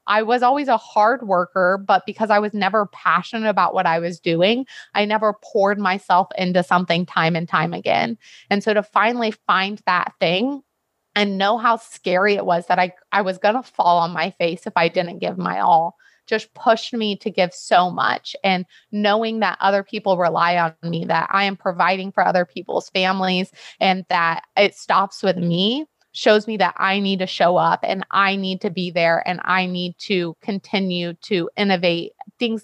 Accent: American